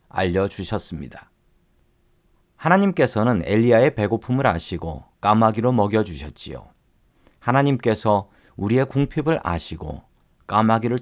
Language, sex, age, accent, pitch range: Korean, male, 40-59, native, 95-135 Hz